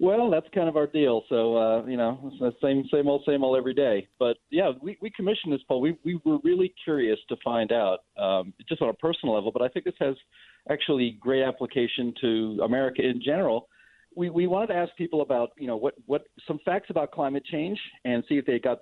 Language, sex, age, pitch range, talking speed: English, male, 40-59, 120-160 Hz, 225 wpm